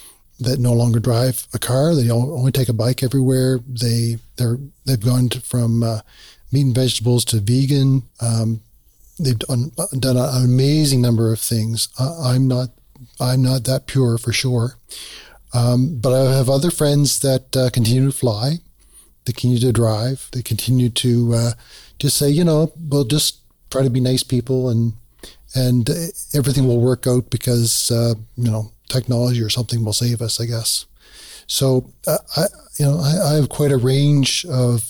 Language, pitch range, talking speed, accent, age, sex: English, 120-135 Hz, 175 wpm, American, 40-59, male